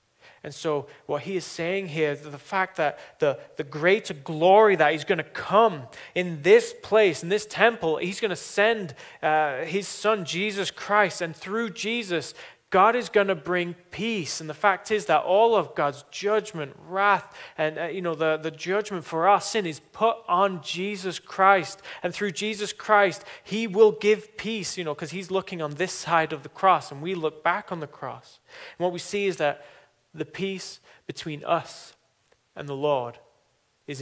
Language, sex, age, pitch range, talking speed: English, male, 30-49, 145-195 Hz, 190 wpm